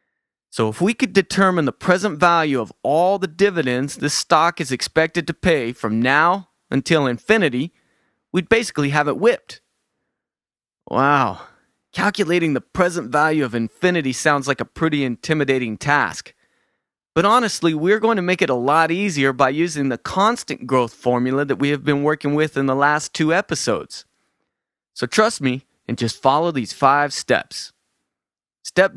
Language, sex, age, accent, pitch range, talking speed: English, male, 30-49, American, 130-180 Hz, 160 wpm